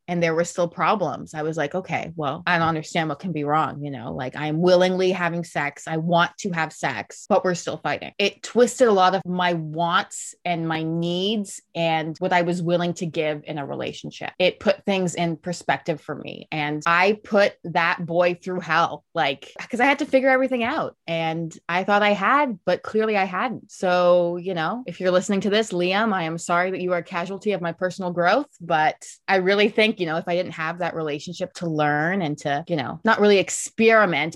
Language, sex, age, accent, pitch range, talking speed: English, female, 20-39, American, 160-195 Hz, 220 wpm